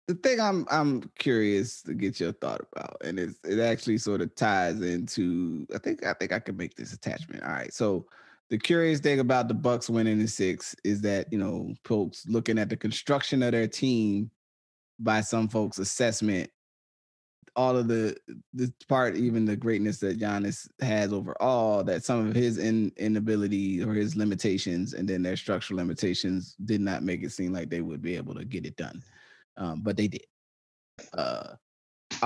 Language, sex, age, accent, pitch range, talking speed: English, male, 20-39, American, 95-115 Hz, 185 wpm